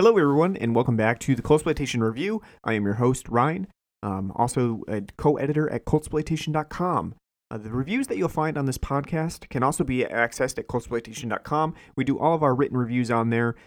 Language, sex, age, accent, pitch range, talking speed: English, male, 30-49, American, 115-145 Hz, 190 wpm